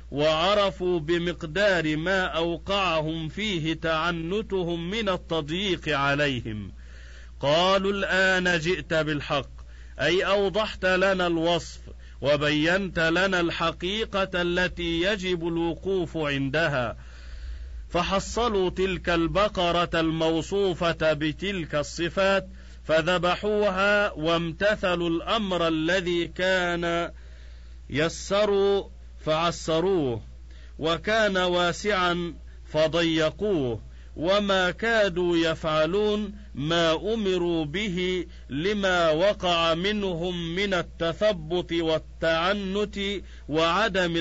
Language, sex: Arabic, male